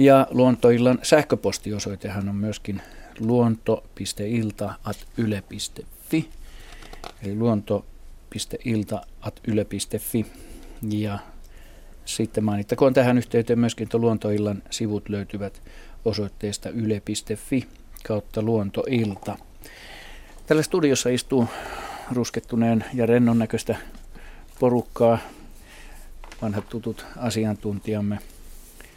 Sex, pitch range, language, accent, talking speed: male, 100-115 Hz, Finnish, native, 70 wpm